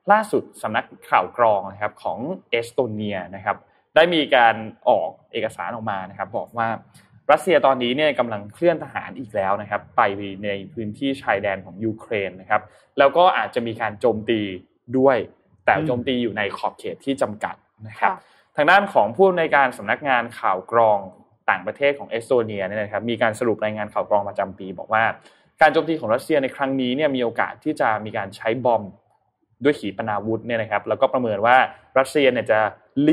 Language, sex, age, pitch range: Thai, male, 20-39, 105-135 Hz